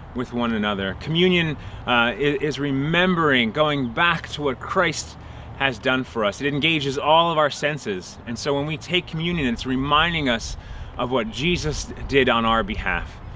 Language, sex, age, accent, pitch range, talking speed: English, male, 30-49, American, 110-145 Hz, 170 wpm